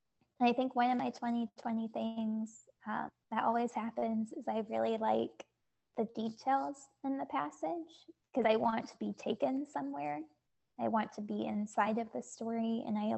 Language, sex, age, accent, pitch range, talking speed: English, female, 10-29, American, 215-250 Hz, 170 wpm